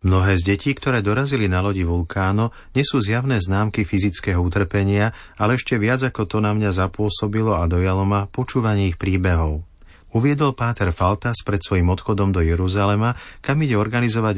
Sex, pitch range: male, 90-110 Hz